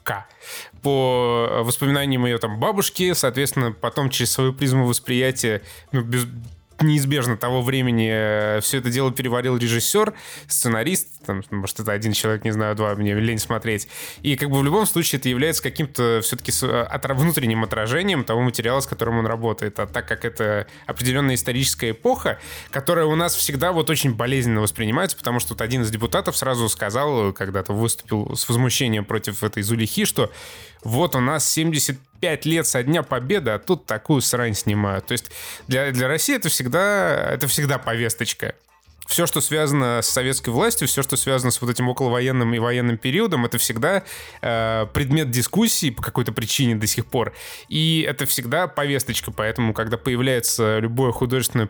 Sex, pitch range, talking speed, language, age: male, 115-140 Hz, 160 wpm, Russian, 20-39